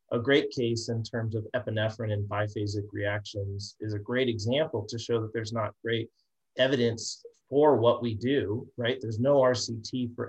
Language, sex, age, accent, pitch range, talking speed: English, male, 30-49, American, 110-130 Hz, 175 wpm